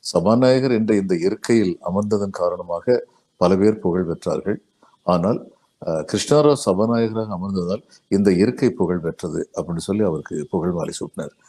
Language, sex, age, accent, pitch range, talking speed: Tamil, male, 50-69, native, 90-110 Hz, 130 wpm